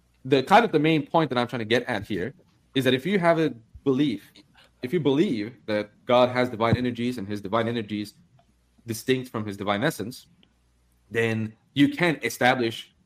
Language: English